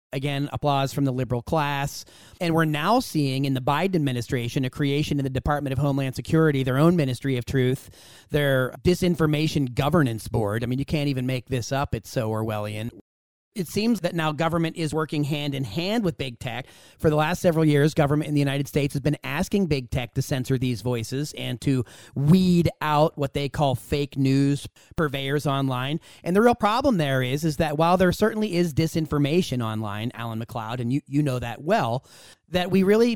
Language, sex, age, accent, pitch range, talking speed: English, male, 30-49, American, 135-175 Hz, 200 wpm